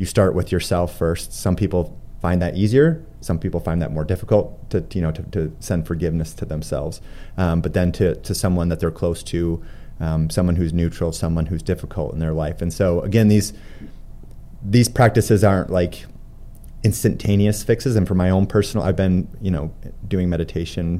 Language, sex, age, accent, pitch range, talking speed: English, male, 30-49, American, 85-100 Hz, 190 wpm